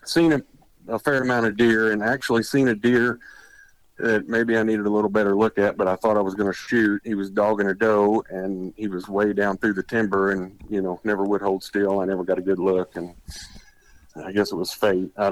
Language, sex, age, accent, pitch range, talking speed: English, male, 40-59, American, 105-125 Hz, 245 wpm